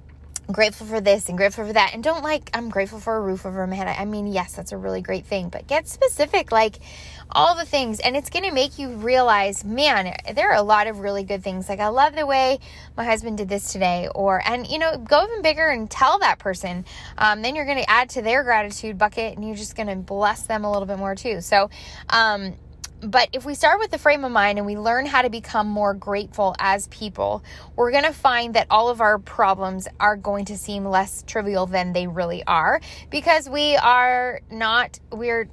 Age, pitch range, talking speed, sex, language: 10-29, 200-260 Hz, 230 wpm, female, English